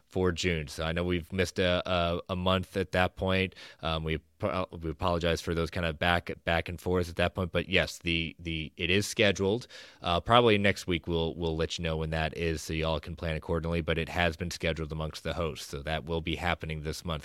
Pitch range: 80-100 Hz